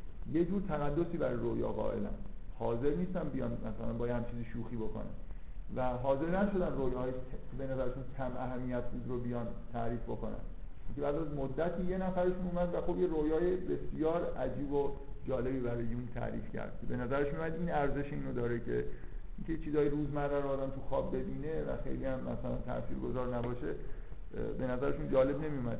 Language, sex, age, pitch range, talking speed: Persian, male, 50-69, 115-145 Hz, 175 wpm